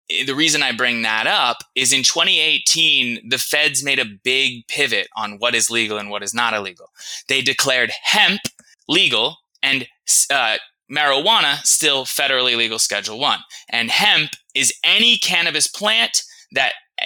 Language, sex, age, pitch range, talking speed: English, male, 20-39, 115-160 Hz, 150 wpm